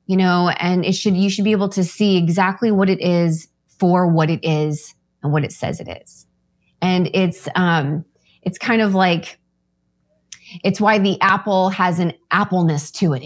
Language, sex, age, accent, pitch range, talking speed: English, female, 20-39, American, 165-195 Hz, 185 wpm